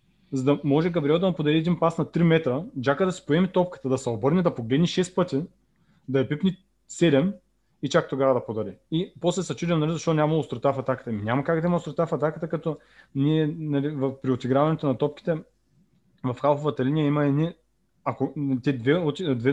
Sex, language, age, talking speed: male, Bulgarian, 20-39, 200 wpm